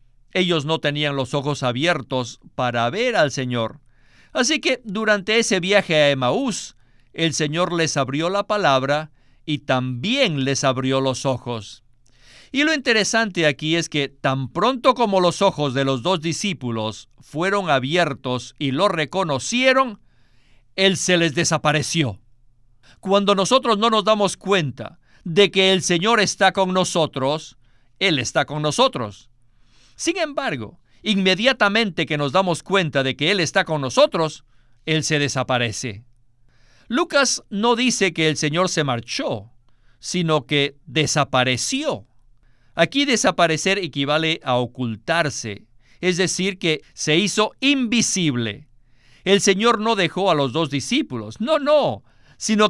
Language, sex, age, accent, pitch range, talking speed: Spanish, male, 50-69, Mexican, 125-195 Hz, 135 wpm